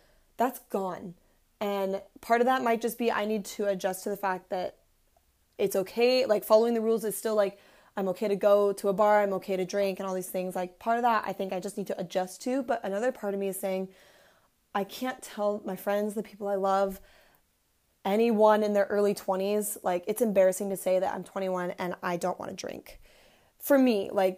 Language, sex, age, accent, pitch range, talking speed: English, female, 20-39, American, 190-220 Hz, 225 wpm